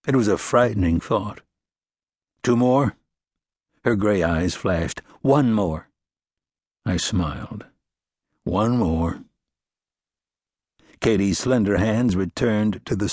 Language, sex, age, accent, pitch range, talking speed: English, male, 60-79, American, 95-125 Hz, 105 wpm